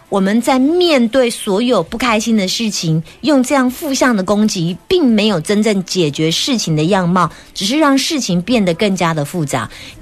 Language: Chinese